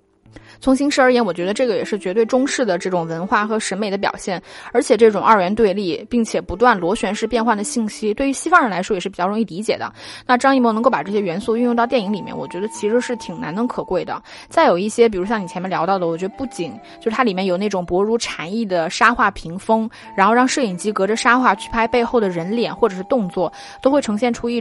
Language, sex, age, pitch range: Chinese, female, 20-39, 190-245 Hz